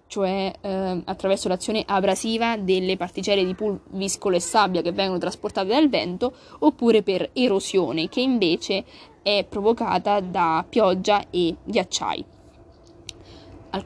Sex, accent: female, native